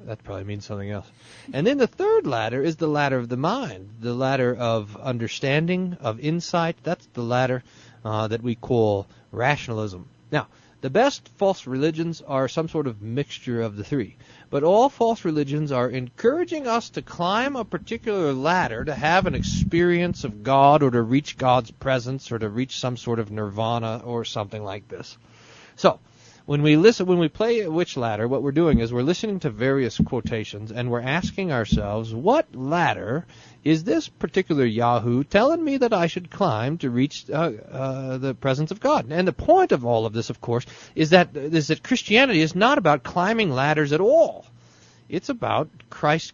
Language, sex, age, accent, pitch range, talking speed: English, male, 40-59, American, 115-165 Hz, 185 wpm